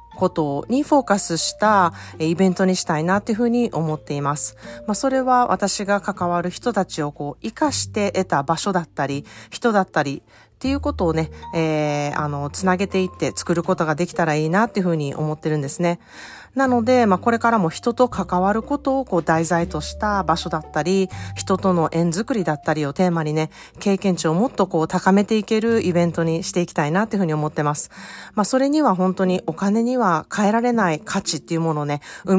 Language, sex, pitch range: Japanese, female, 160-215 Hz